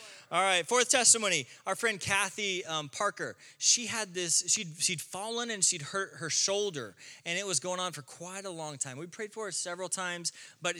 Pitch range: 145-195 Hz